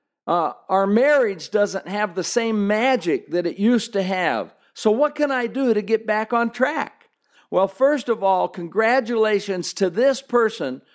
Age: 50-69